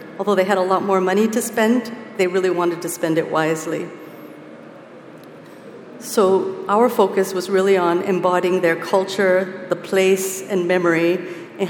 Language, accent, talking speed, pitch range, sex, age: English, American, 155 wpm, 180-210 Hz, female, 50-69